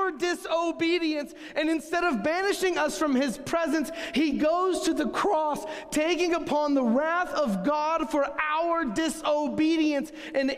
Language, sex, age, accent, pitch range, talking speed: English, male, 30-49, American, 260-320 Hz, 135 wpm